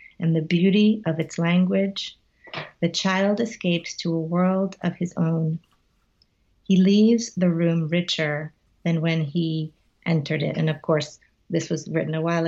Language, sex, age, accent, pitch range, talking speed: English, female, 30-49, American, 160-185 Hz, 160 wpm